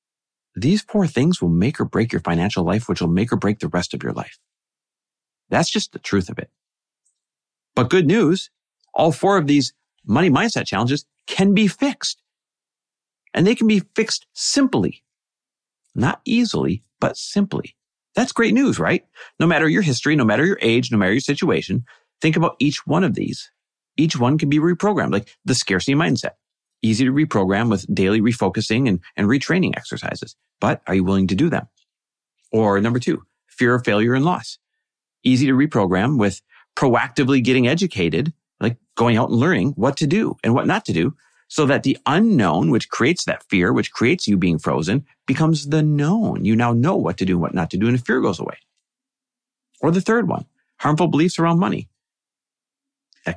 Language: English